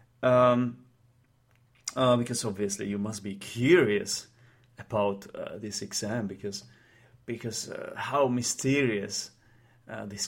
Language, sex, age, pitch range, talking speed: English, male, 30-49, 110-130 Hz, 110 wpm